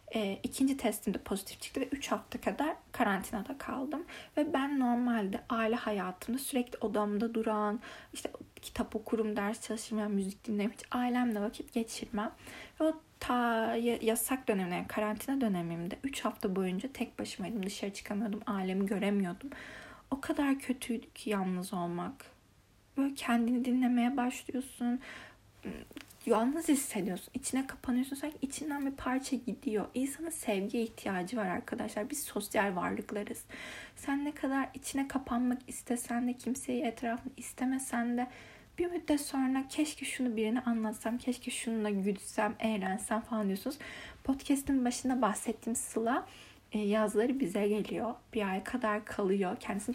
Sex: female